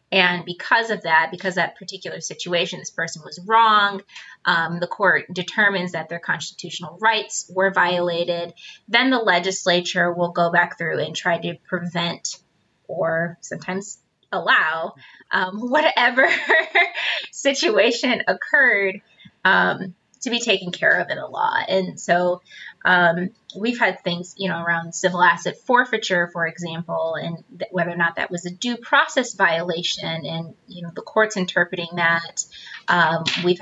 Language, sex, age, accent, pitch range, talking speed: English, female, 20-39, American, 175-210 Hz, 145 wpm